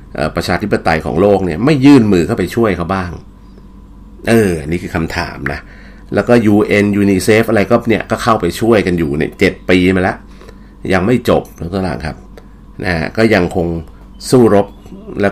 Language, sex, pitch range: Thai, male, 85-110 Hz